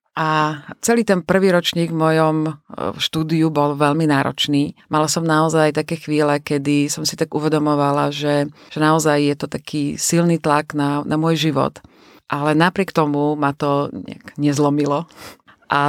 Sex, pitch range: female, 145-165 Hz